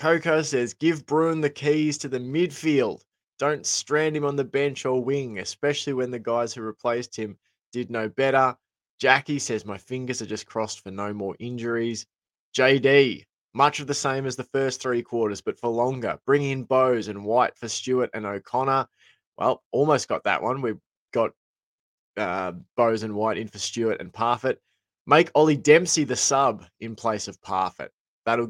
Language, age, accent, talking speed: English, 20-39, Australian, 180 wpm